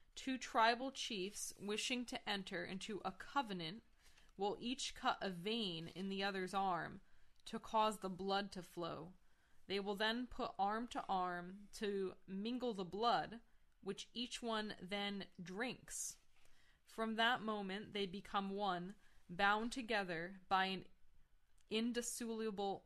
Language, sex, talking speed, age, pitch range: English, female, 135 wpm, 20-39, 190-225 Hz